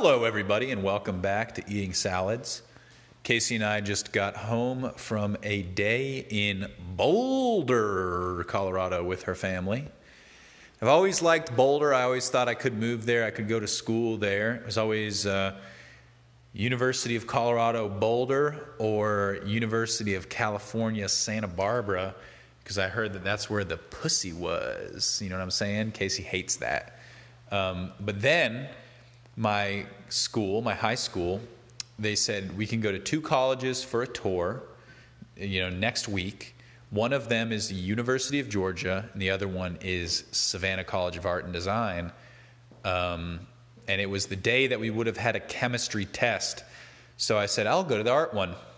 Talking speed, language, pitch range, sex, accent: 165 wpm, English, 95-120 Hz, male, American